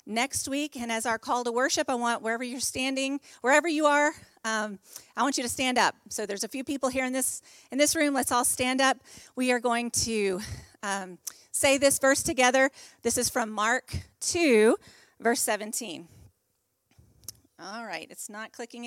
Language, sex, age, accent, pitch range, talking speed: English, female, 40-59, American, 215-275 Hz, 190 wpm